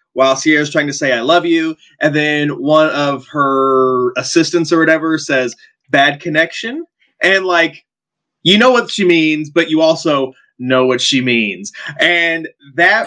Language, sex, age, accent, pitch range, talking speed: English, male, 20-39, American, 135-185 Hz, 160 wpm